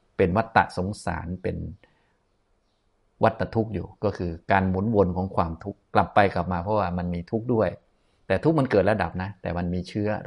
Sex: male